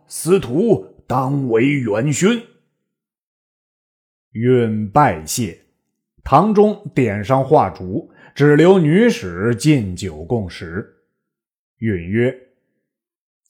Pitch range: 105-170 Hz